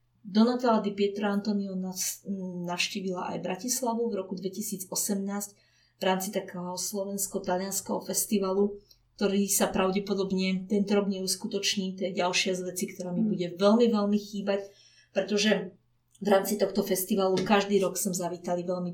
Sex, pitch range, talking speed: female, 185-210 Hz, 135 wpm